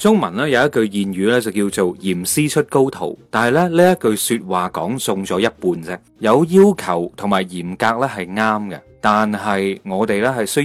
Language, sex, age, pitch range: Chinese, male, 30-49, 100-150 Hz